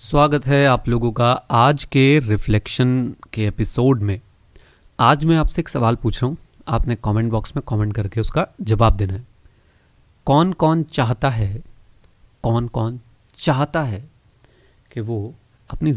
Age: 30-49